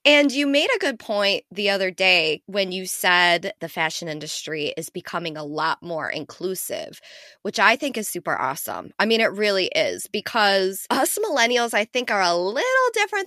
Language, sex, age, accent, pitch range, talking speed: English, female, 20-39, American, 180-225 Hz, 185 wpm